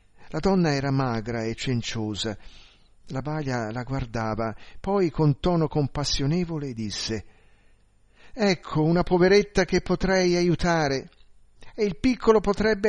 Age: 50-69